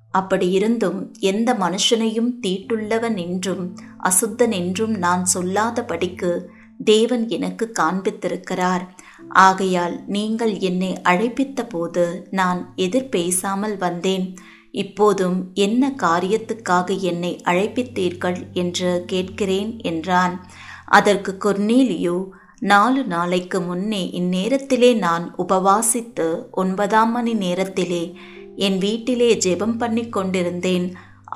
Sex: female